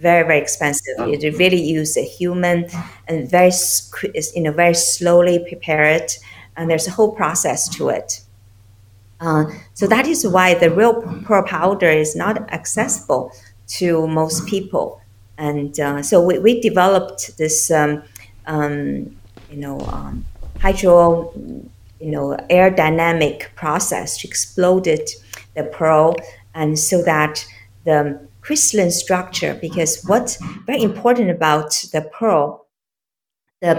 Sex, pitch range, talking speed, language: female, 150-185 Hz, 130 wpm, English